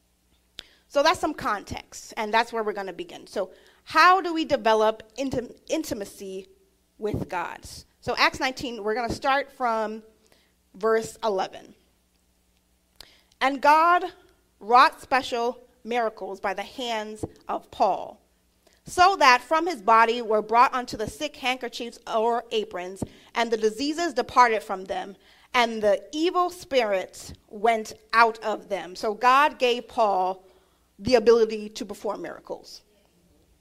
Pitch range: 195-265 Hz